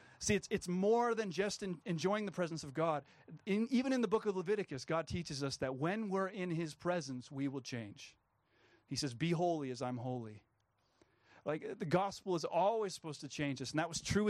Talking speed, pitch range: 215 wpm, 150-205 Hz